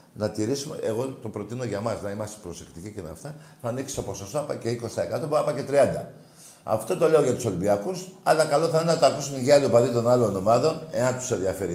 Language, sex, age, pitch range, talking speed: Greek, male, 50-69, 110-150 Hz, 230 wpm